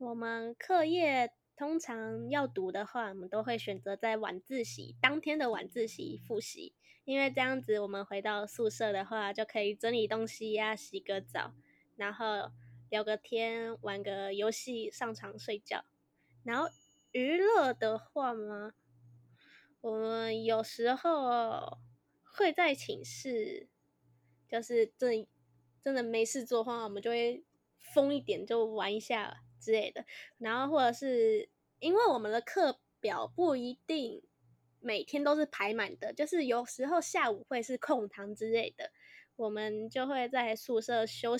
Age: 10-29